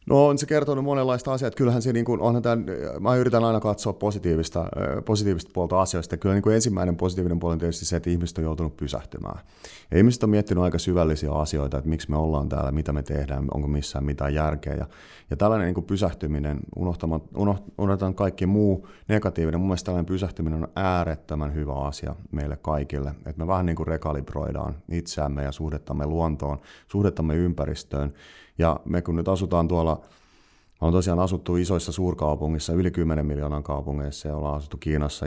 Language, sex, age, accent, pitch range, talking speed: Finnish, male, 30-49, native, 75-95 Hz, 165 wpm